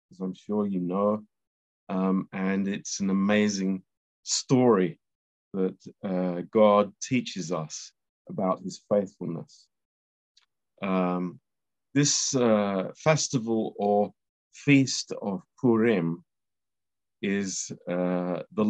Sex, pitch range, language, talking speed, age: male, 90-115 Hz, Romanian, 95 wpm, 50-69